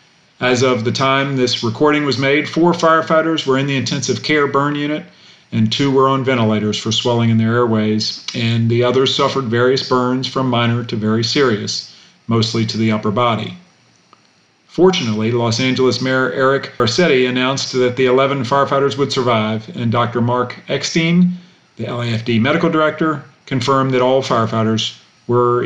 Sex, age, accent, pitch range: male, 40-59, American, 115-140 Hz